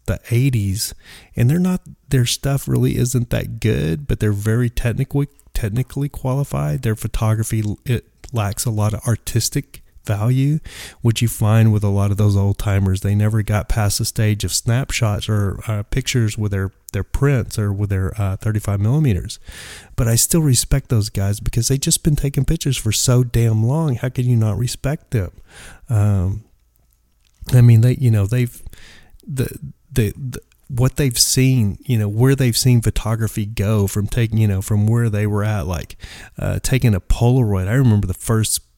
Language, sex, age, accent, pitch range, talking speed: English, male, 30-49, American, 100-125 Hz, 180 wpm